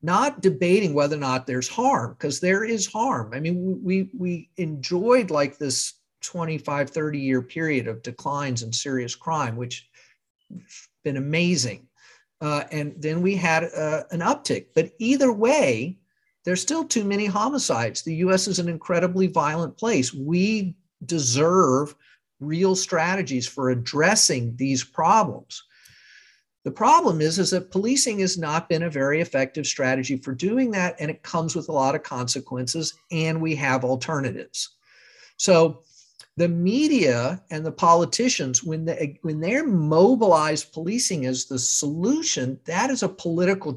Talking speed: 145 wpm